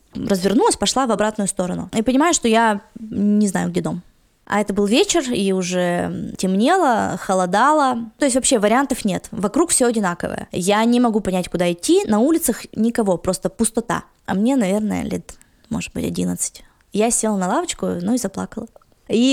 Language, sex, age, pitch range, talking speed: Russian, female, 20-39, 185-240 Hz, 170 wpm